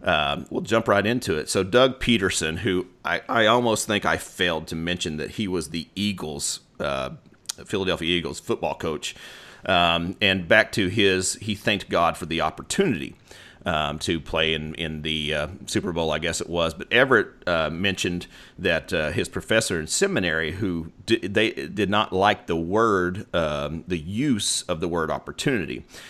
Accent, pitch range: American, 80-105 Hz